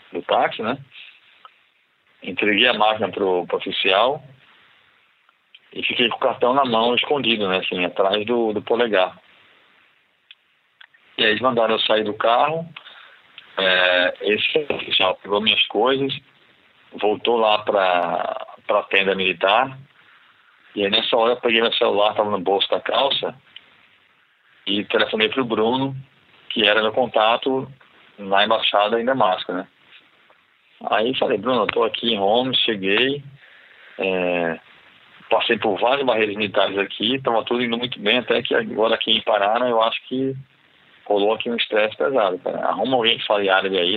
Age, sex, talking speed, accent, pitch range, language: 40-59, male, 150 wpm, Brazilian, 100-135 Hz, Portuguese